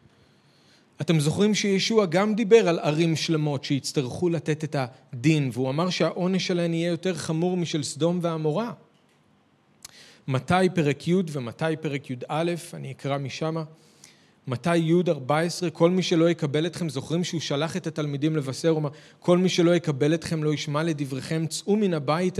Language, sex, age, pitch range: Hebrew, male, 40-59, 150-185 Hz